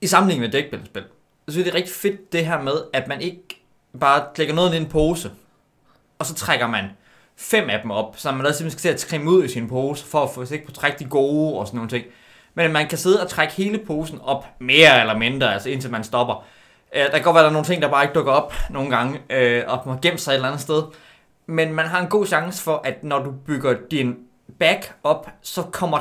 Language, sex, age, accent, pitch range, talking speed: Danish, male, 20-39, native, 135-180 Hz, 260 wpm